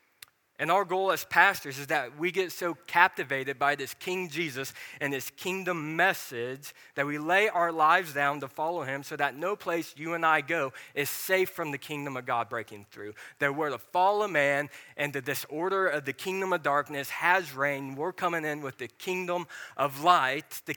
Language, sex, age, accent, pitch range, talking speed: English, male, 20-39, American, 135-175 Hz, 200 wpm